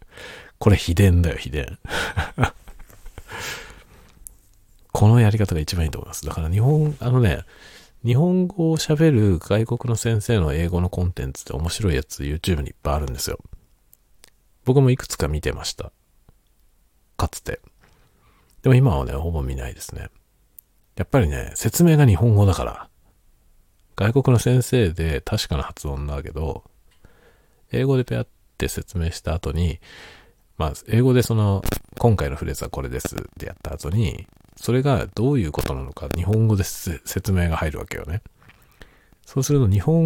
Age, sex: 40-59, male